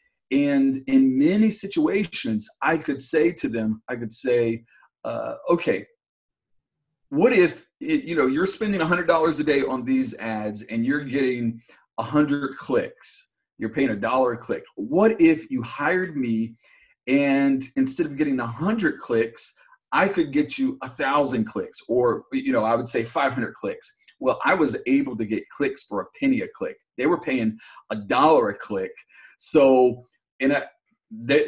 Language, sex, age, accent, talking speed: English, male, 40-59, American, 175 wpm